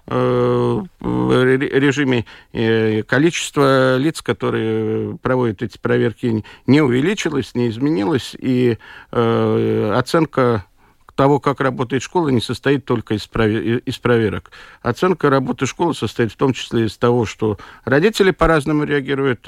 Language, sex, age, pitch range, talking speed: Russian, male, 50-69, 110-145 Hz, 110 wpm